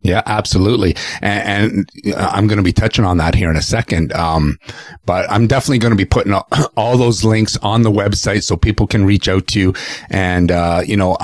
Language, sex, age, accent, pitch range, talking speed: English, male, 40-59, American, 85-105 Hz, 215 wpm